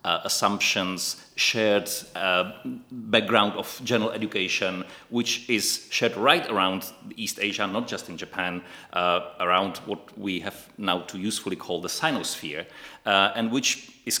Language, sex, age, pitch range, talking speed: English, male, 40-59, 95-120 Hz, 145 wpm